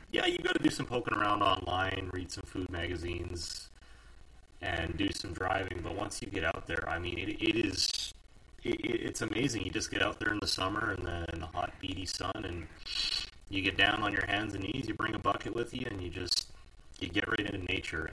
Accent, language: American, English